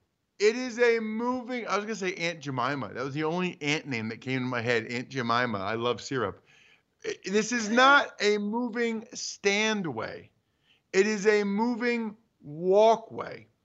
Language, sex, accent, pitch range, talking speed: English, male, American, 150-215 Hz, 165 wpm